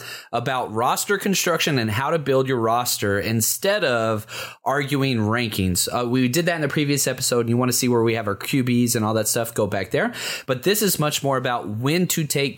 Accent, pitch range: American, 120-175 Hz